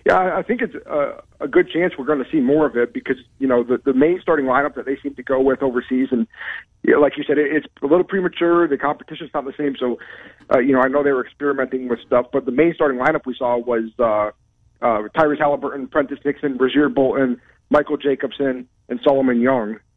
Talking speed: 230 wpm